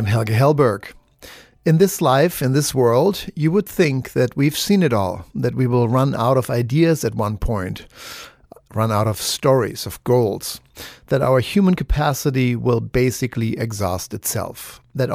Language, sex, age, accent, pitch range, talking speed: English, male, 50-69, German, 105-135 Hz, 165 wpm